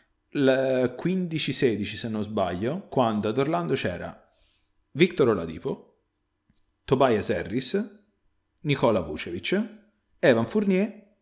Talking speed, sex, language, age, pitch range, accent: 90 wpm, male, Italian, 30-49, 105-140 Hz, native